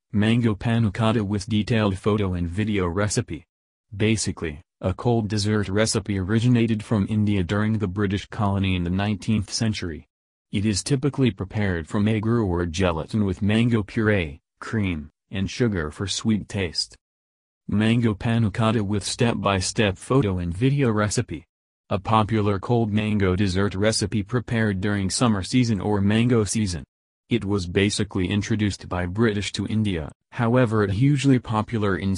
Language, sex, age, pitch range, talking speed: English, male, 30-49, 95-115 Hz, 145 wpm